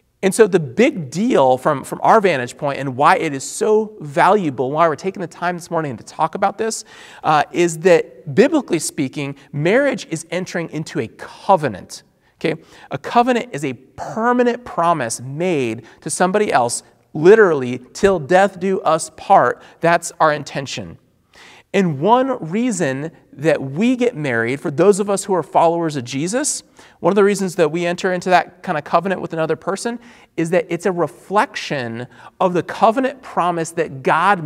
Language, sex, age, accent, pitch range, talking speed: English, male, 40-59, American, 135-190 Hz, 175 wpm